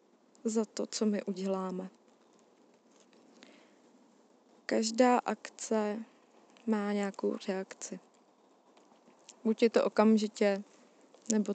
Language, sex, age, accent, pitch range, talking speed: Czech, female, 20-39, native, 210-250 Hz, 80 wpm